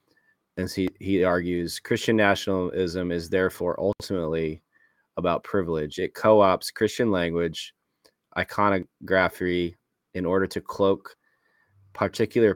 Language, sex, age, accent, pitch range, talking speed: English, male, 20-39, American, 85-95 Hz, 100 wpm